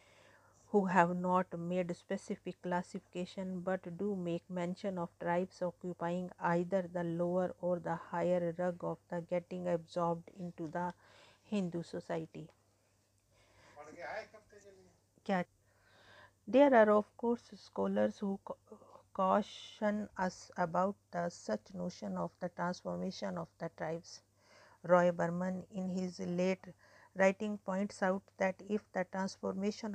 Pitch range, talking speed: 175-195 Hz, 120 wpm